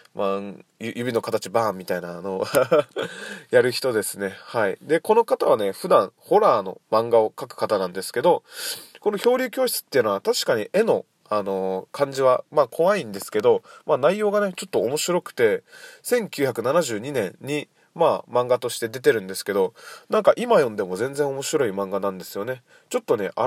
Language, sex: Japanese, male